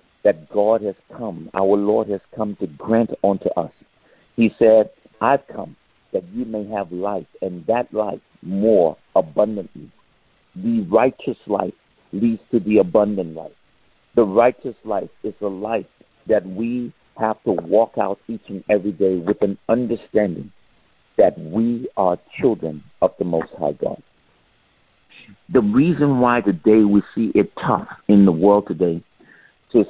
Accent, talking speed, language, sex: American, 150 wpm, English, male